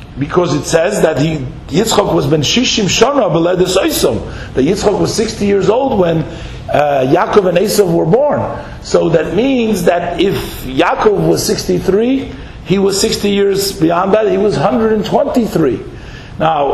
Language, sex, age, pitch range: English, male, 50-69, 155-210 Hz